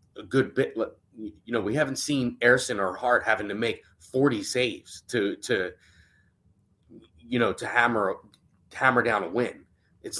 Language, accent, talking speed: English, American, 160 wpm